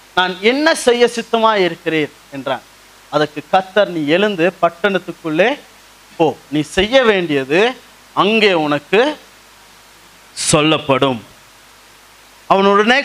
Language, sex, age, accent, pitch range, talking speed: Tamil, male, 30-49, native, 150-215 Hz, 85 wpm